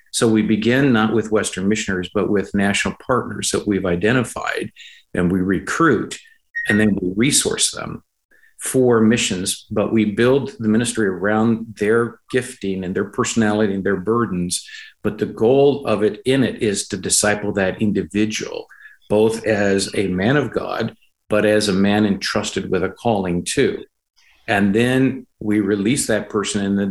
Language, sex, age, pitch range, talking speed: English, male, 50-69, 95-115 Hz, 165 wpm